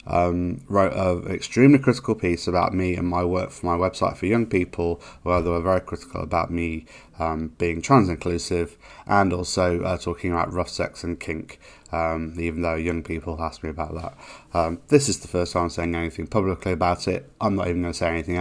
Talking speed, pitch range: 210 wpm, 85-100 Hz